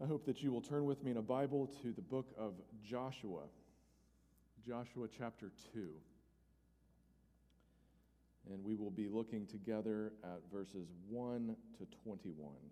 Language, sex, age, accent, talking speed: English, male, 40-59, American, 140 wpm